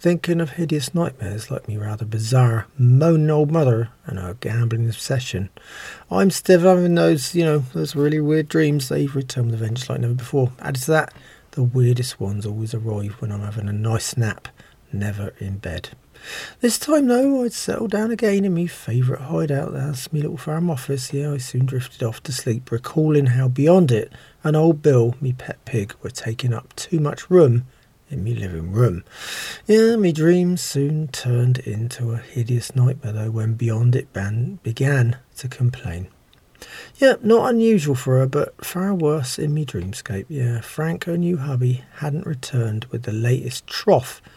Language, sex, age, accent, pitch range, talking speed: English, male, 40-59, British, 115-155 Hz, 180 wpm